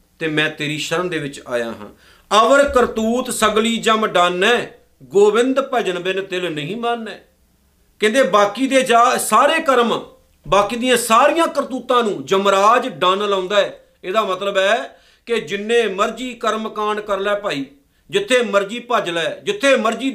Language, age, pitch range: Punjabi, 50-69, 175-215 Hz